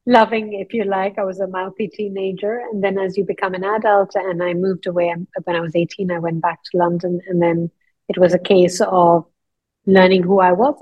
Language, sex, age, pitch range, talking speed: English, female, 30-49, 175-205 Hz, 220 wpm